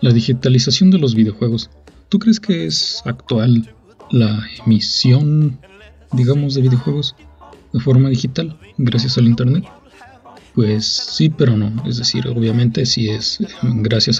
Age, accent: 40-59, Mexican